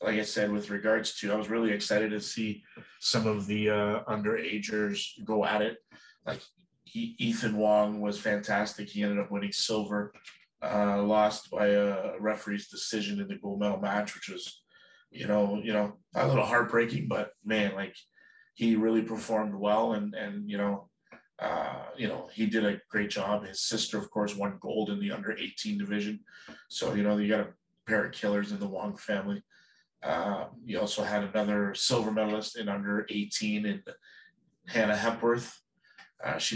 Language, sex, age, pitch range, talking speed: English, male, 30-49, 105-115 Hz, 180 wpm